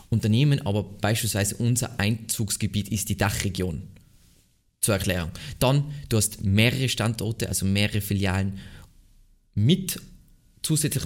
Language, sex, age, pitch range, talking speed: German, male, 20-39, 100-125 Hz, 110 wpm